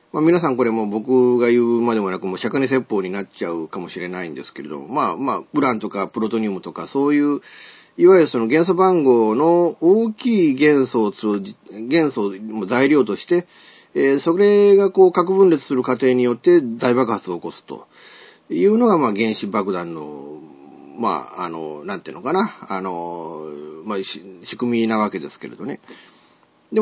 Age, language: 40-59, Japanese